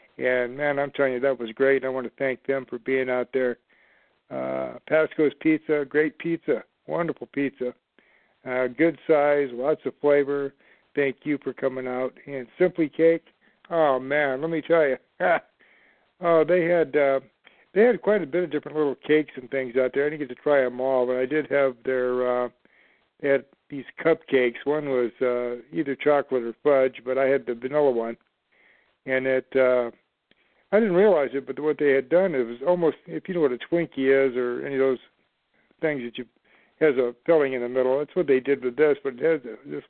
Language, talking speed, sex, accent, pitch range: English, 210 wpm, male, American, 130-155 Hz